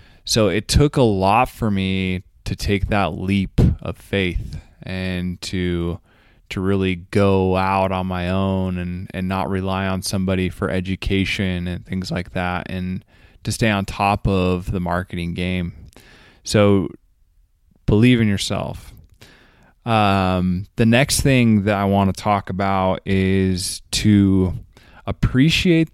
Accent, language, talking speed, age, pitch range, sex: American, English, 140 wpm, 20-39, 95-110 Hz, male